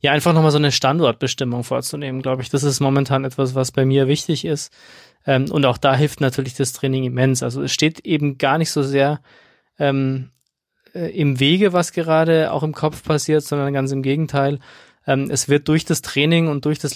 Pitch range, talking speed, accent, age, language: 135-150 Hz, 190 wpm, German, 20-39, German